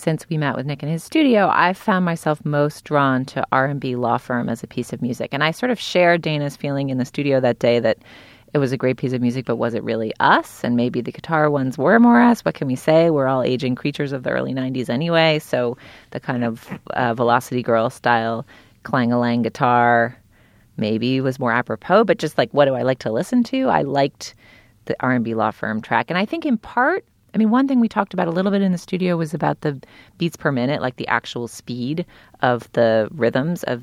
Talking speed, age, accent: 235 wpm, 30-49, American